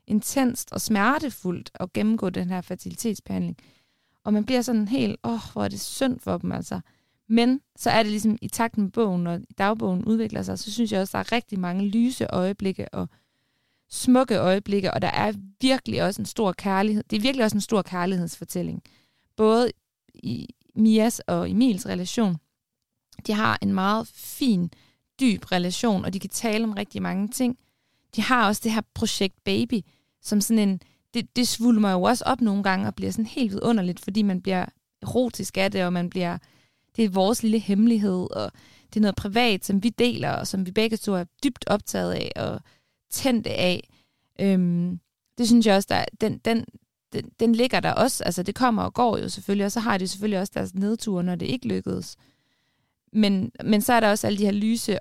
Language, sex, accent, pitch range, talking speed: Danish, female, native, 185-225 Hz, 200 wpm